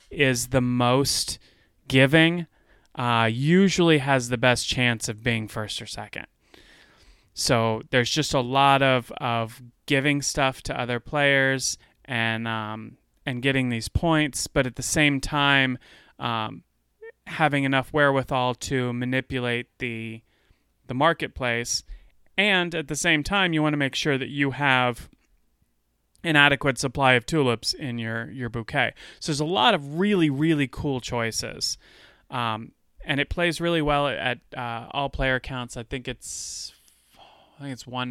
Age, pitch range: 30-49, 115-140 Hz